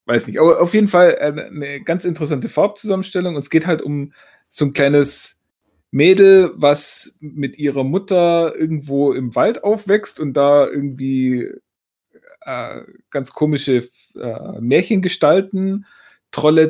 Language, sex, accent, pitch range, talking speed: German, male, German, 130-180 Hz, 130 wpm